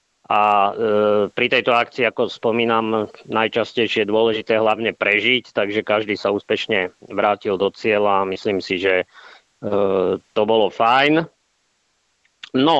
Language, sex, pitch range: Slovak, male, 105-125 Hz